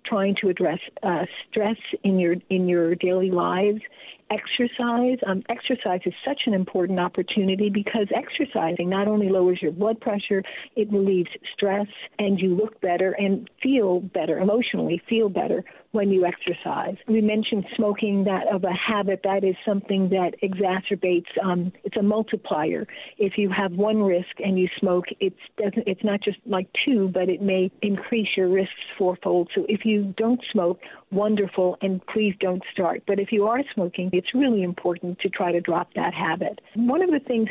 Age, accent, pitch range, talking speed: 50-69, American, 185-215 Hz, 175 wpm